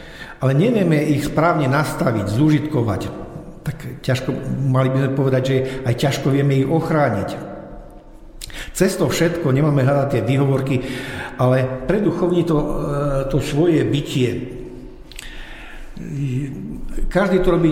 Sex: male